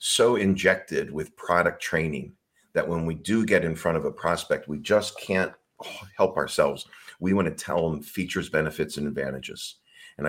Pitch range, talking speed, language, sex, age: 80-95 Hz, 175 wpm, English, male, 40-59